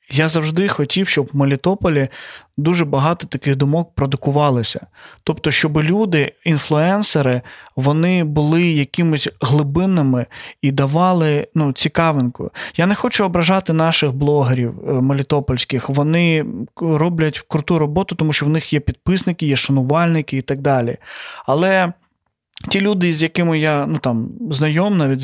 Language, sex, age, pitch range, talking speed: Ukrainian, male, 30-49, 140-175 Hz, 130 wpm